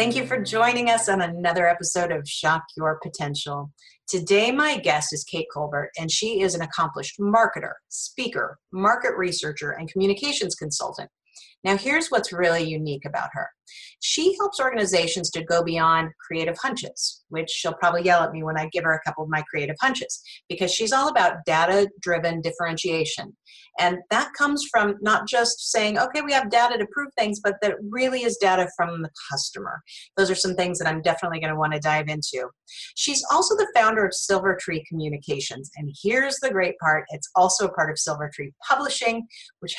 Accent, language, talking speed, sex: American, English, 180 wpm, female